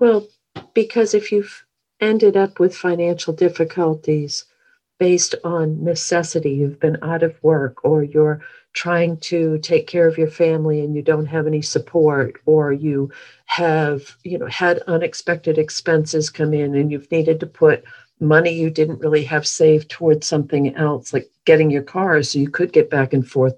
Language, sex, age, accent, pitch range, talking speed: English, female, 50-69, American, 140-165 Hz, 170 wpm